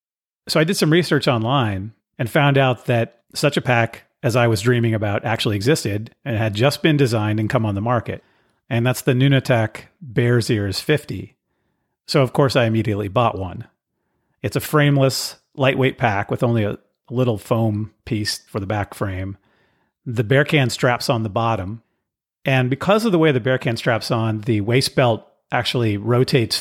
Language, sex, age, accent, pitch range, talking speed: English, male, 40-59, American, 105-130 Hz, 185 wpm